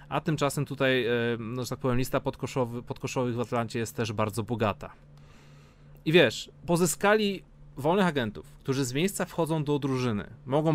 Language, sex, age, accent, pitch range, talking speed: Polish, male, 30-49, native, 120-160 Hz, 155 wpm